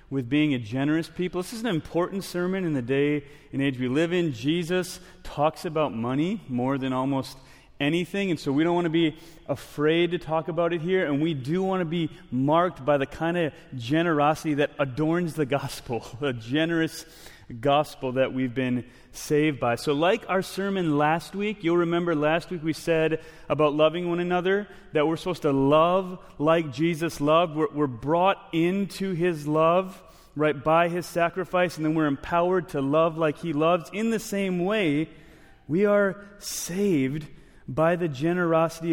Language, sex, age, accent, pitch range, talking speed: English, male, 30-49, American, 140-175 Hz, 180 wpm